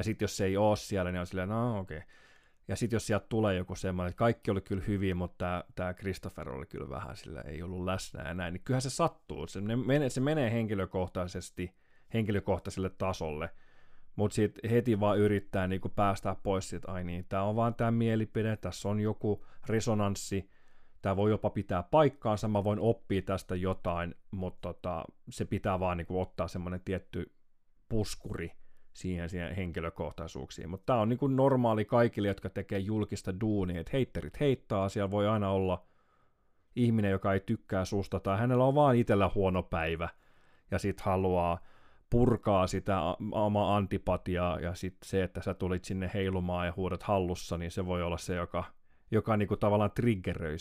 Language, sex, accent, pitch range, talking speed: Finnish, male, native, 90-105 Hz, 170 wpm